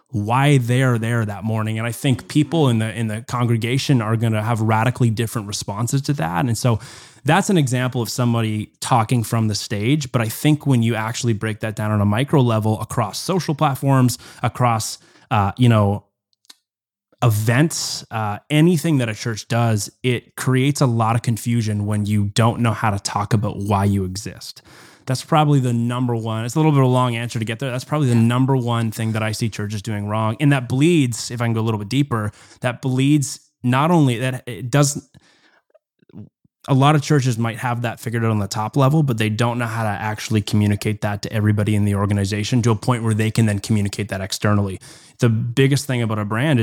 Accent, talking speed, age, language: American, 215 wpm, 20-39, English